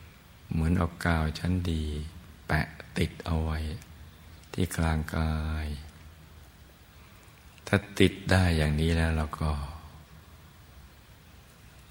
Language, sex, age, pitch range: Thai, male, 60-79, 75-85 Hz